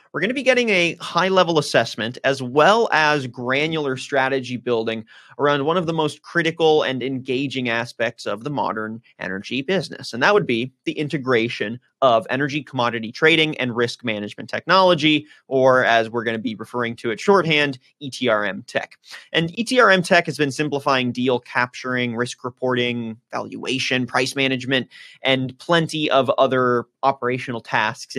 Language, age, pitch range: English, 30-49, 120-160 Hz